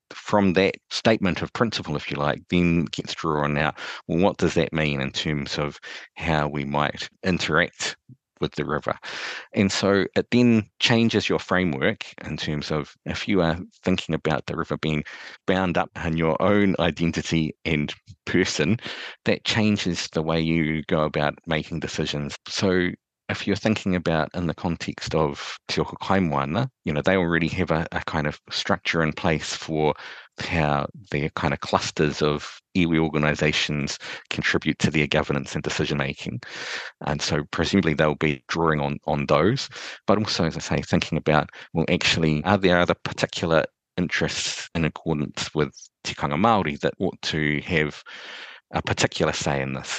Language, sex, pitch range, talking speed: English, male, 75-90 Hz, 165 wpm